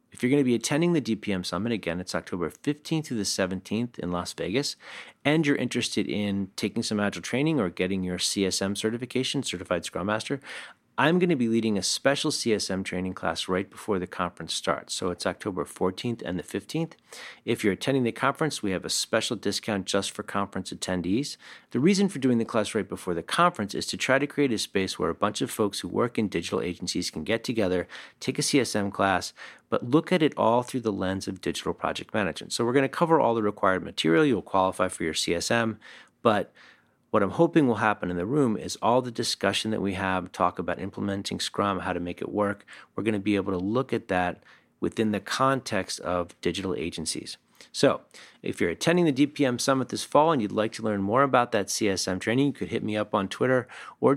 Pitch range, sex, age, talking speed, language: 95-125 Hz, male, 40-59, 220 wpm, English